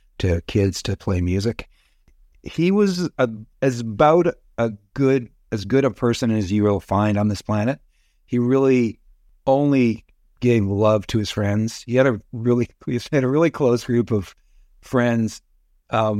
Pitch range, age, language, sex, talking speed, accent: 95-115 Hz, 50-69, English, male, 165 wpm, American